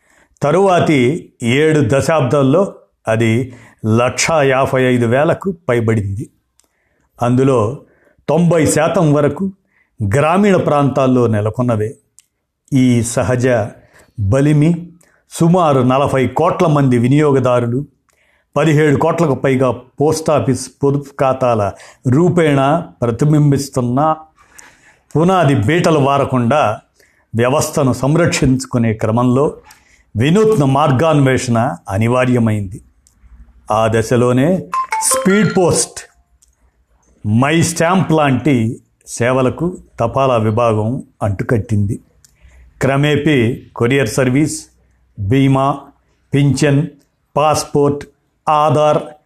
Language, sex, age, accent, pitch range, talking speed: Telugu, male, 50-69, native, 120-150 Hz, 70 wpm